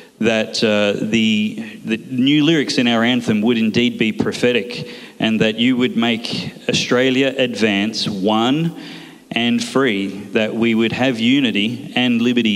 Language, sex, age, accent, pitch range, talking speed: English, male, 30-49, Australian, 105-130 Hz, 145 wpm